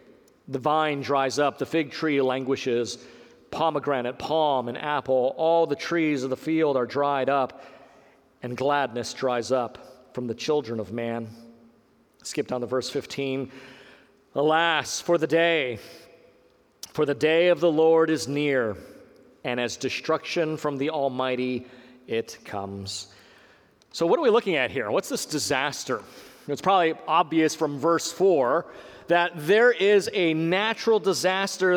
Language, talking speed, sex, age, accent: English, 145 wpm, male, 40-59, American